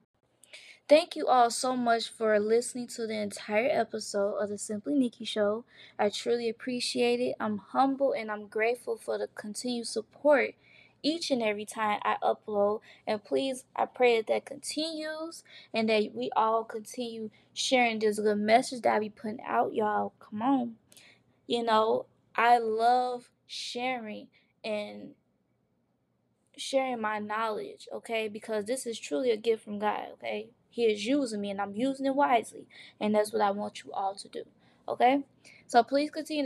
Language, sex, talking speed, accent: English, female, 165 wpm, American